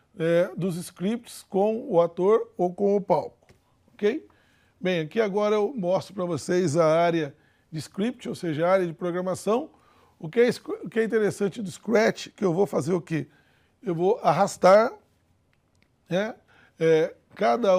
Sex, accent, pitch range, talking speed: male, Brazilian, 170-210 Hz, 150 wpm